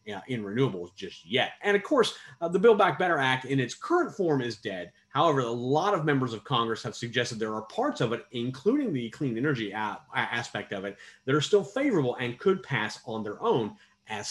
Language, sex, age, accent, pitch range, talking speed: English, male, 30-49, American, 110-145 Hz, 215 wpm